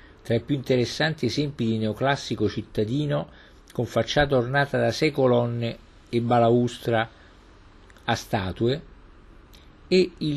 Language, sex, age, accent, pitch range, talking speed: Italian, male, 50-69, native, 95-135 Hz, 115 wpm